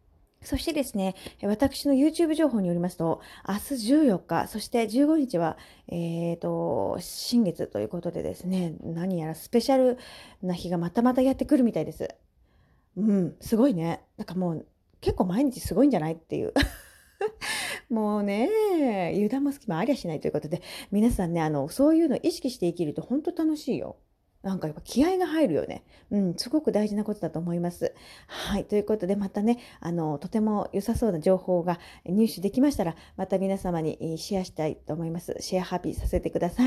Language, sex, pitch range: Japanese, female, 175-250 Hz